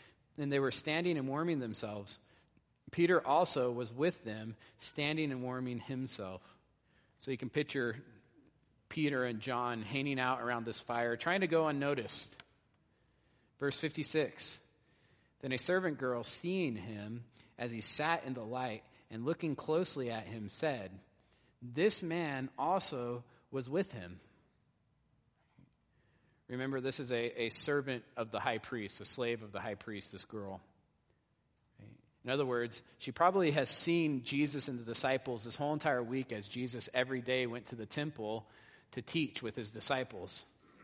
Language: English